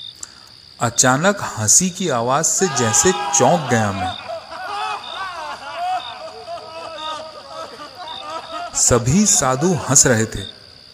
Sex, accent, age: male, native, 40-59